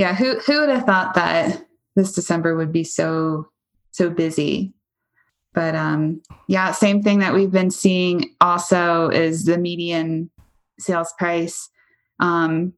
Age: 20-39